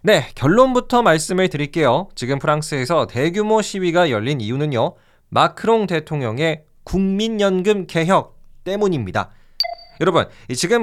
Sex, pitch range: male, 155-225 Hz